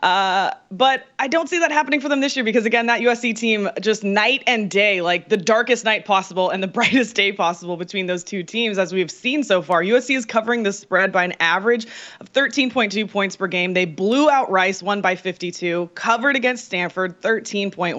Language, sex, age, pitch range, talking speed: English, female, 20-39, 185-240 Hz, 210 wpm